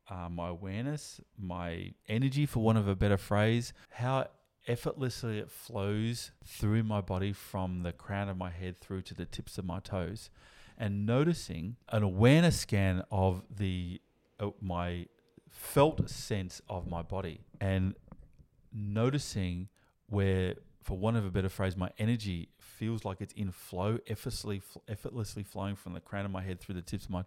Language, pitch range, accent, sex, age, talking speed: English, 90-110 Hz, Australian, male, 30-49, 165 wpm